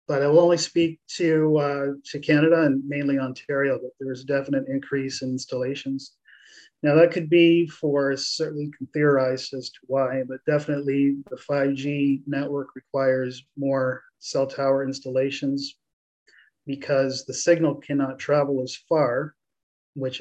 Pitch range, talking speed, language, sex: 130-145 Hz, 145 wpm, English, male